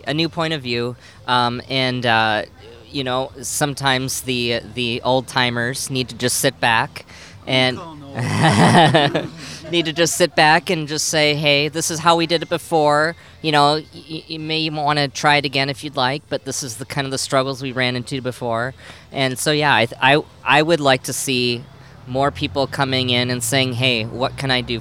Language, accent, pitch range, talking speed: English, American, 120-150 Hz, 200 wpm